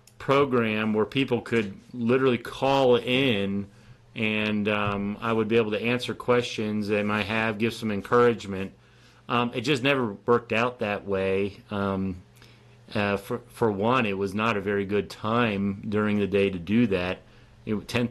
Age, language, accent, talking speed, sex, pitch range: 40-59, English, American, 160 wpm, male, 105-120 Hz